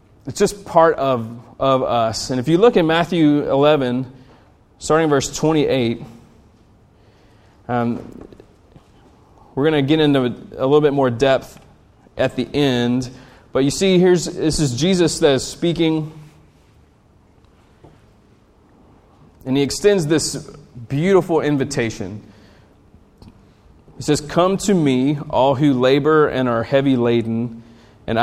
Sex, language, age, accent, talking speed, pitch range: male, English, 30-49, American, 130 wpm, 115-150 Hz